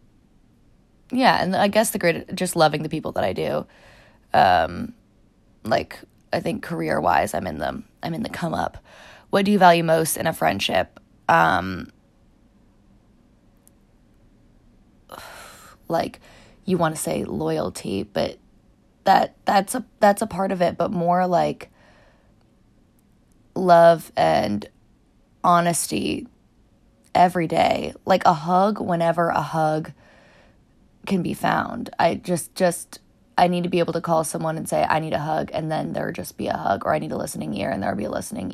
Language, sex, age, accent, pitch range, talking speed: English, female, 20-39, American, 160-190 Hz, 160 wpm